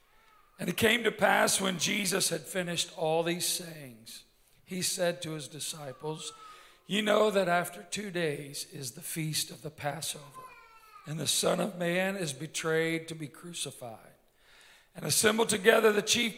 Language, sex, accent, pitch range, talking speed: English, male, American, 140-190 Hz, 160 wpm